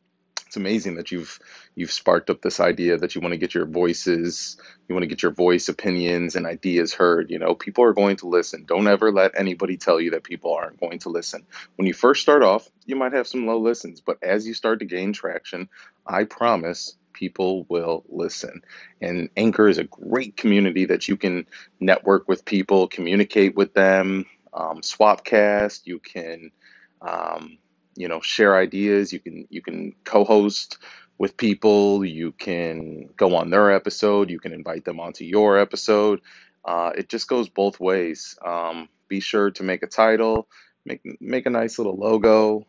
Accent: American